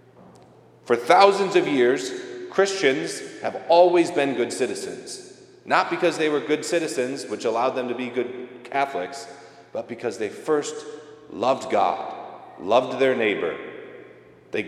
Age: 30-49